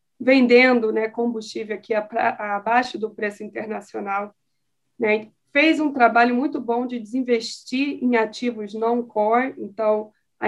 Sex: female